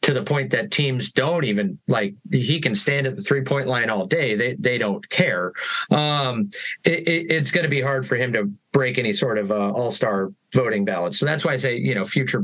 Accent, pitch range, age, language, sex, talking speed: American, 125-150 Hz, 30-49, English, male, 230 wpm